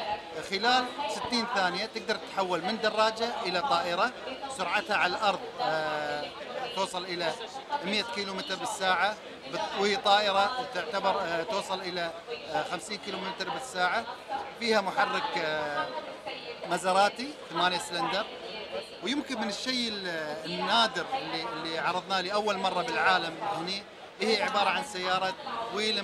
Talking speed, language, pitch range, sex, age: 110 wpm, Arabic, 180-225 Hz, male, 40-59